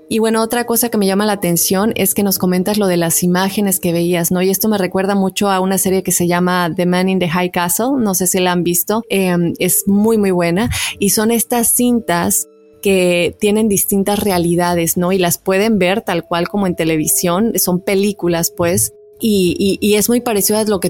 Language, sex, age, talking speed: Spanish, female, 20-39, 225 wpm